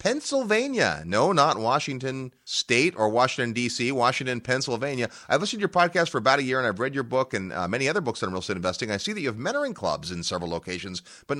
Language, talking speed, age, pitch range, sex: English, 230 wpm, 30-49, 100-130 Hz, male